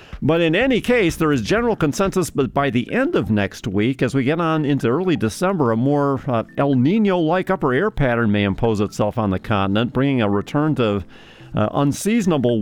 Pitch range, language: 120-170 Hz, English